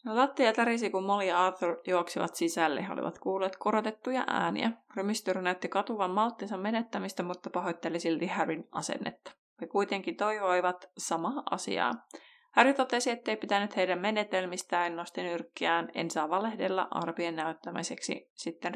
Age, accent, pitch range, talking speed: 20-39, native, 175-215 Hz, 145 wpm